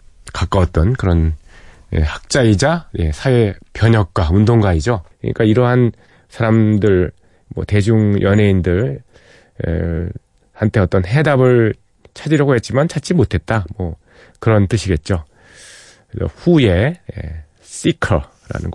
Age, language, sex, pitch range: 30-49, Korean, male, 90-120 Hz